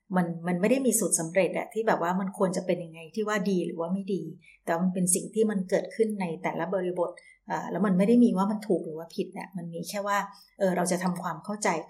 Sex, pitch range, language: female, 175-200 Hz, Thai